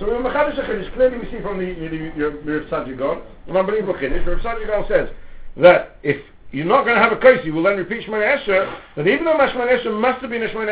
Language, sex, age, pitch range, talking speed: English, male, 60-79, 175-270 Hz, 225 wpm